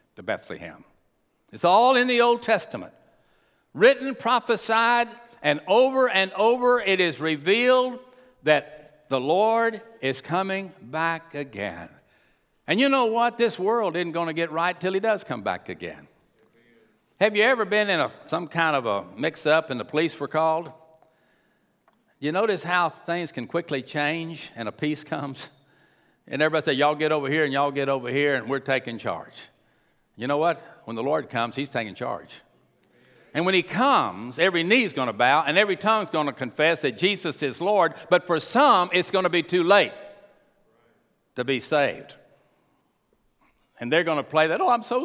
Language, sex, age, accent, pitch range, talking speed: English, male, 60-79, American, 155-240 Hz, 180 wpm